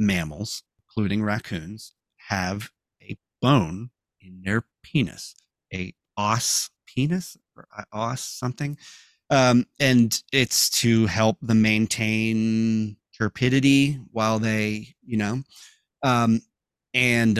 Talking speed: 100 wpm